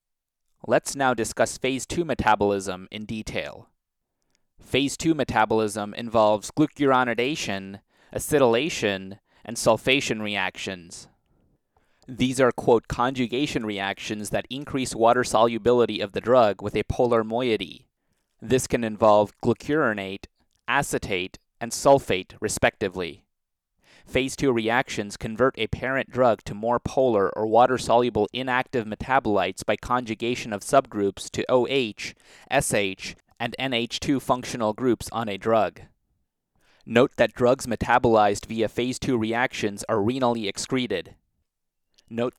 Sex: male